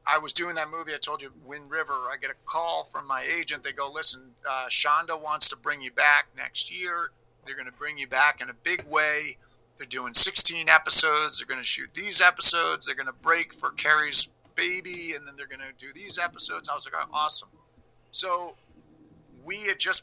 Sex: male